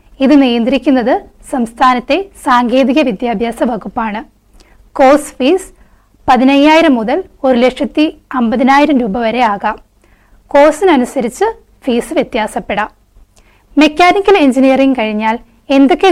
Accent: native